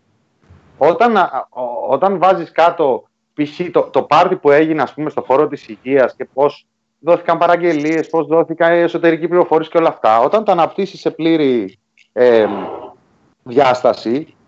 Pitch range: 130-190 Hz